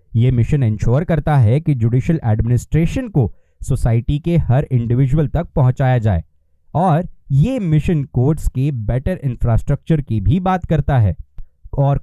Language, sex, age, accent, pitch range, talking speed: Hindi, male, 20-39, native, 120-165 Hz, 140 wpm